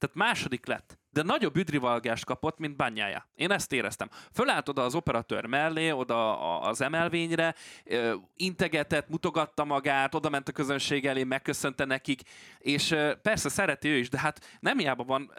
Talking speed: 155 wpm